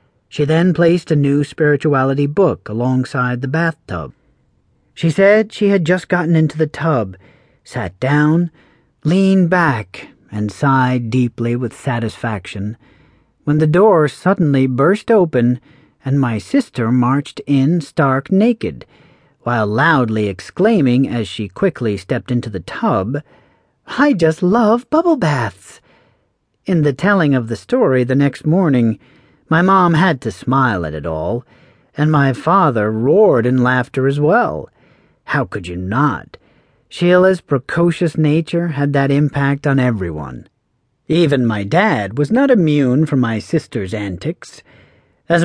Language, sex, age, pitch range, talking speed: English, male, 40-59, 120-170 Hz, 135 wpm